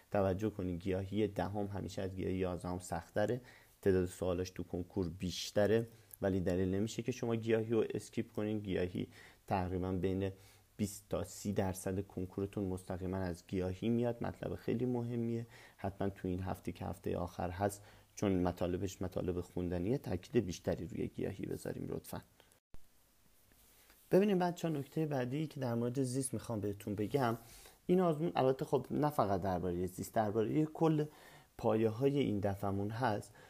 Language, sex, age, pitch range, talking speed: Persian, male, 40-59, 95-135 Hz, 160 wpm